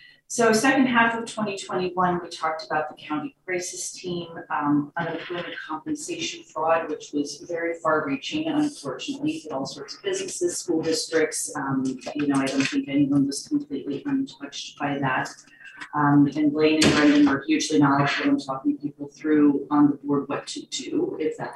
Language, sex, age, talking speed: English, female, 30-49, 170 wpm